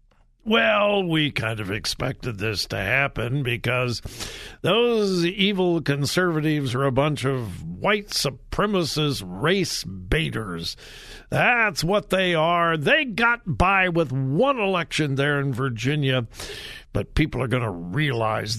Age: 60-79